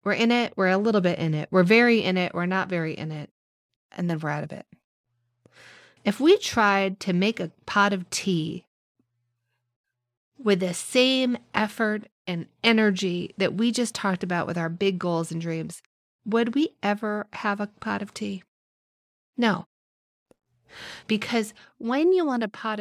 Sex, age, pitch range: female, 30-49, 170-225 Hz